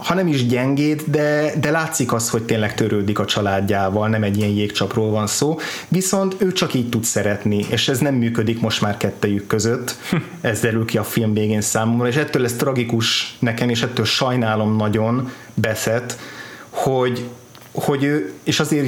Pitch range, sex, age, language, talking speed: 110-135 Hz, male, 30-49, Hungarian, 175 wpm